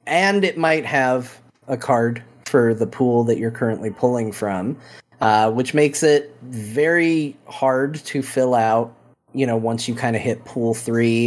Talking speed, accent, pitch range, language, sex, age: 170 wpm, American, 115-145 Hz, English, male, 30-49